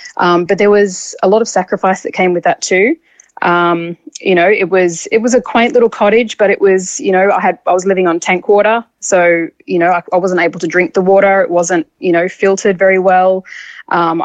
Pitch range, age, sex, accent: 170-195 Hz, 20-39, female, Australian